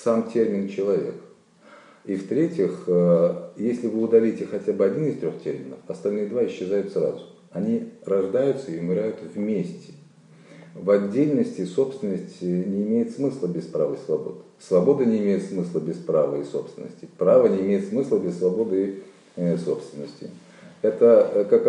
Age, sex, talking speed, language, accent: 40-59, male, 140 wpm, Russian, native